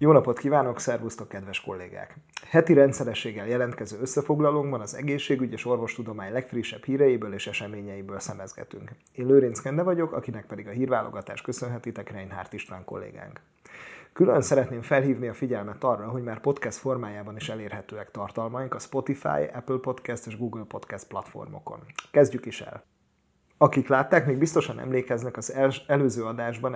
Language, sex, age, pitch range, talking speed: Hungarian, male, 30-49, 110-135 Hz, 140 wpm